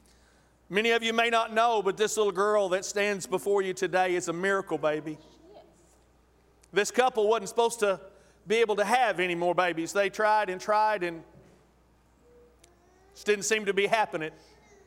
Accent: American